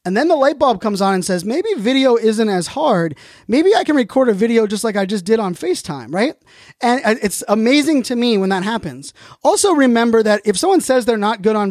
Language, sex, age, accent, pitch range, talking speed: English, male, 20-39, American, 195-245 Hz, 235 wpm